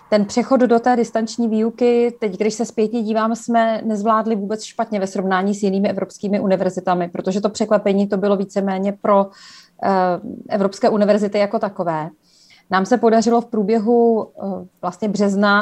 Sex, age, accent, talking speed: female, 30-49, native, 150 wpm